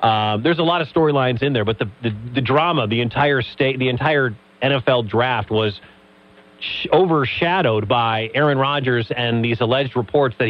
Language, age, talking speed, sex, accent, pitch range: English, 40-59, 175 wpm, male, American, 110-145 Hz